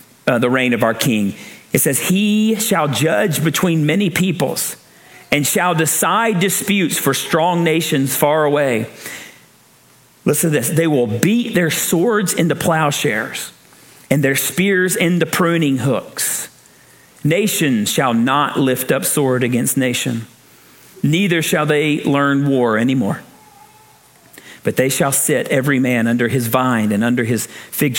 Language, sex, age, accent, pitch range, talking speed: English, male, 50-69, American, 135-200 Hz, 140 wpm